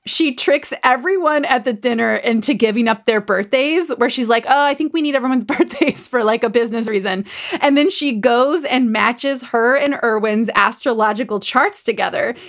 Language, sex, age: English, female, 20-39